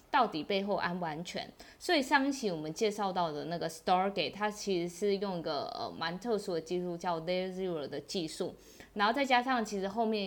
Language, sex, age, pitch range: Chinese, female, 20-39, 175-235 Hz